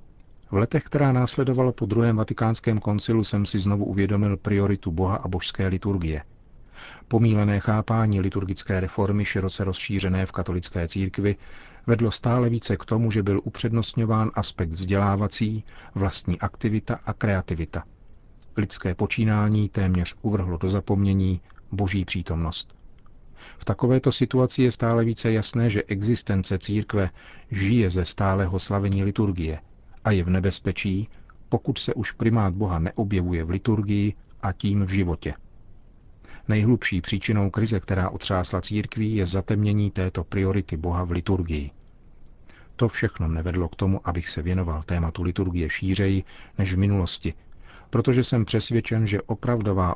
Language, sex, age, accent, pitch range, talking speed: Czech, male, 40-59, native, 95-110 Hz, 135 wpm